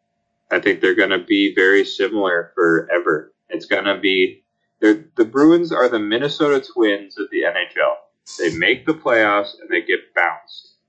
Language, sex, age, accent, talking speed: English, male, 30-49, American, 165 wpm